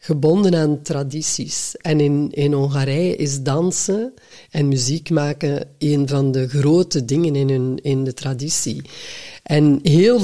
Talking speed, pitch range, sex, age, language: 135 wpm, 145-175 Hz, female, 50-69, Dutch